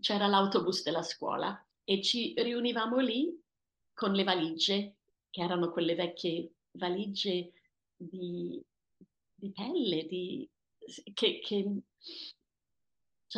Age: 30-49